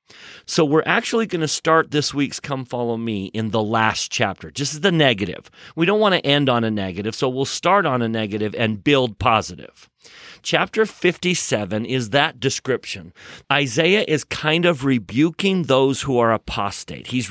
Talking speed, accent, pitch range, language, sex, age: 175 wpm, American, 105-145 Hz, English, male, 40-59